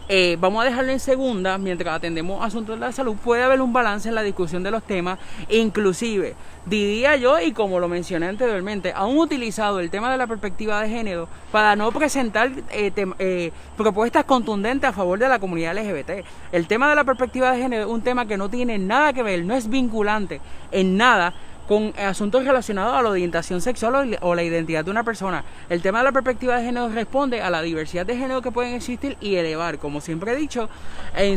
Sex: male